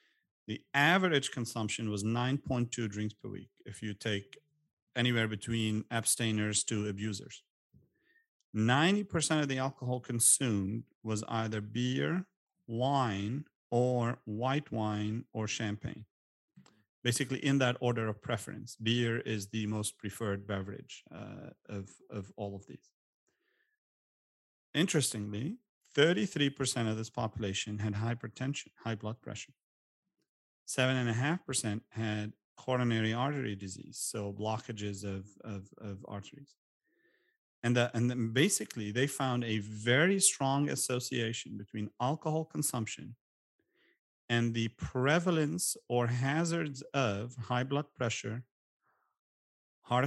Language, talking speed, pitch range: English, 115 wpm, 105-135 Hz